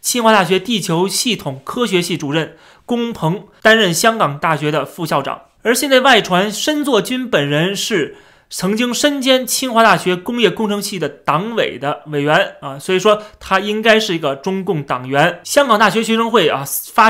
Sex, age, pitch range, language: male, 30-49, 155-225 Hz, Chinese